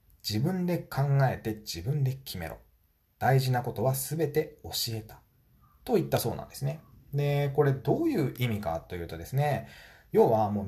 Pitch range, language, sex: 100-150 Hz, Japanese, male